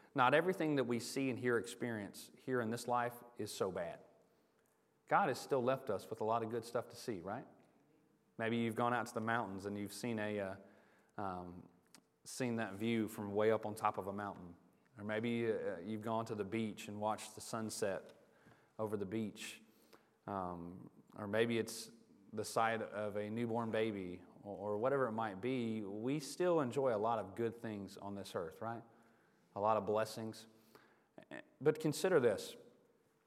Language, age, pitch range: English, 30-49, 110-140 Hz